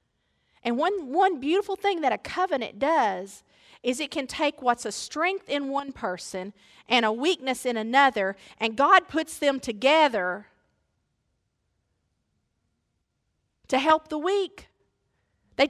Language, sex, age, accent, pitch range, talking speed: English, female, 40-59, American, 235-330 Hz, 130 wpm